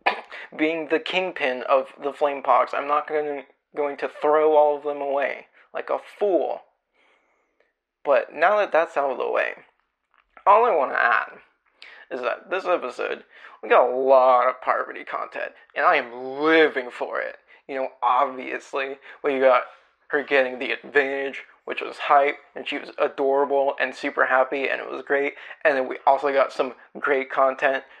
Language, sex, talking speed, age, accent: English, male, 175 wpm, 20-39, American